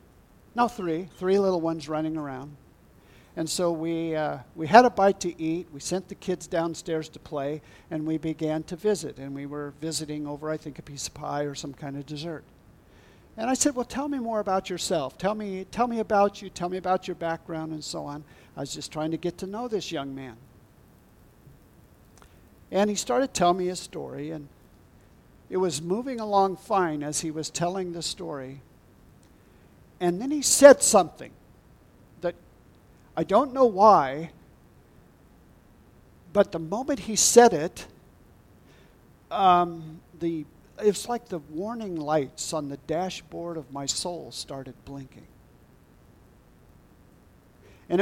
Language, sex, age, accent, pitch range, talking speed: English, male, 50-69, American, 150-195 Hz, 160 wpm